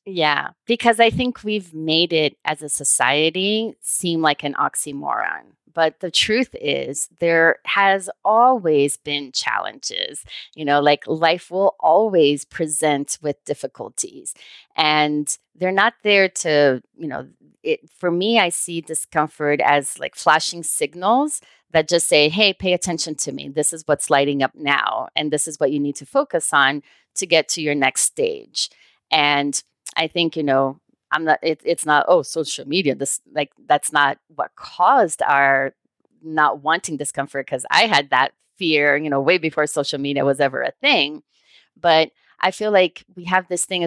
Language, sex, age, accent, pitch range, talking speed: English, female, 30-49, American, 145-185 Hz, 170 wpm